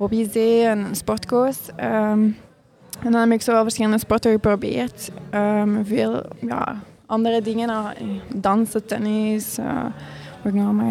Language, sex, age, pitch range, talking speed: Dutch, female, 20-39, 215-235 Hz, 130 wpm